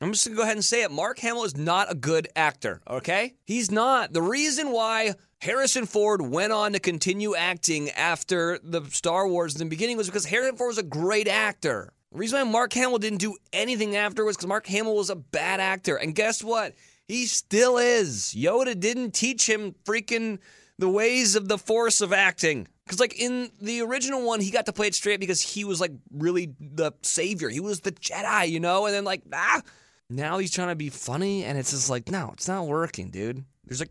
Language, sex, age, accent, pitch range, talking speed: English, male, 30-49, American, 135-210 Hz, 220 wpm